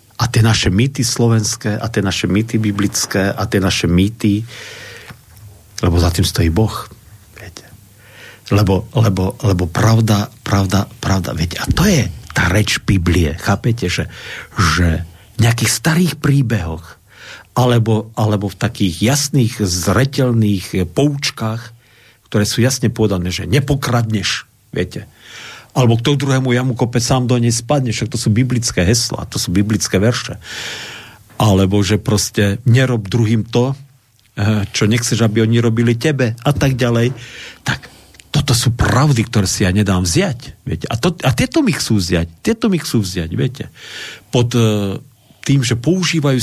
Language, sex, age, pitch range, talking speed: Slovak, male, 50-69, 100-125 Hz, 140 wpm